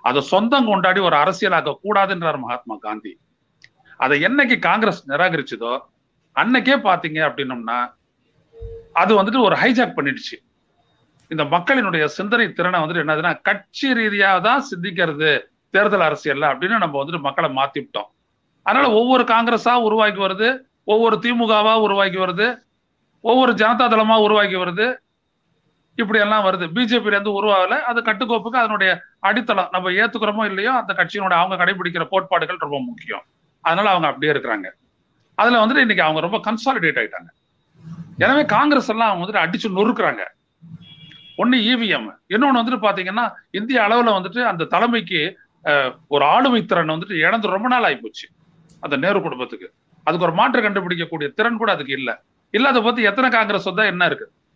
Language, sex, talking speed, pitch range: Tamil, male, 35 wpm, 170-235 Hz